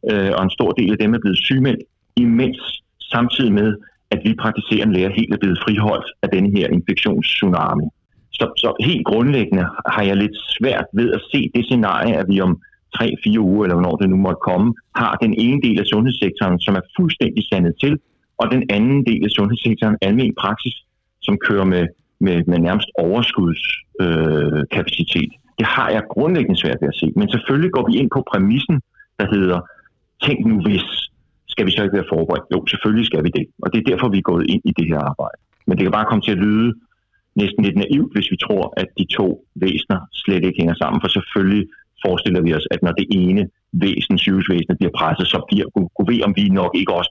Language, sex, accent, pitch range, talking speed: Danish, male, native, 95-115 Hz, 205 wpm